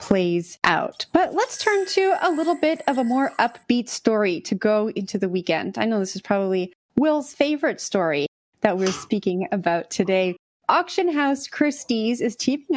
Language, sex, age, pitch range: English, female, 30-49, 190-235 Hz